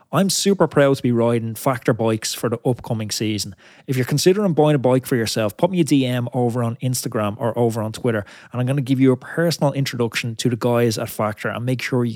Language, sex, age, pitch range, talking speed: English, male, 20-39, 120-150 Hz, 240 wpm